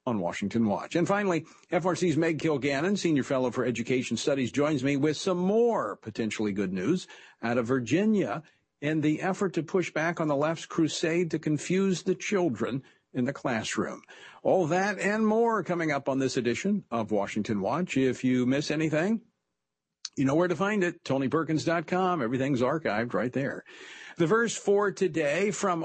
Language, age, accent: English, 50-69, American